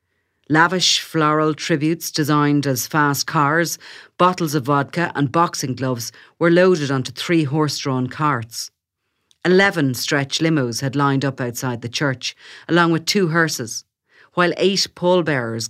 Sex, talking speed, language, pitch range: female, 135 wpm, English, 130-165 Hz